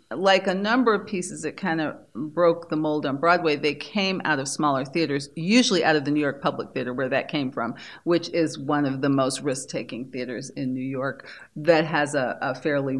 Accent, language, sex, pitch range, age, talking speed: American, English, female, 145-180 Hz, 40-59, 215 wpm